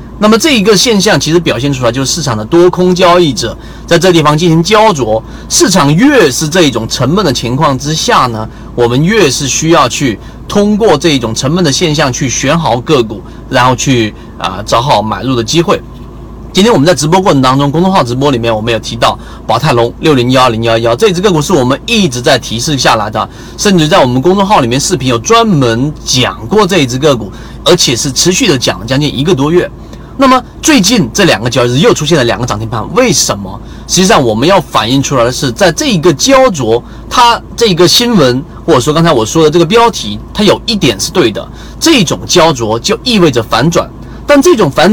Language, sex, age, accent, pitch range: Chinese, male, 30-49, native, 120-185 Hz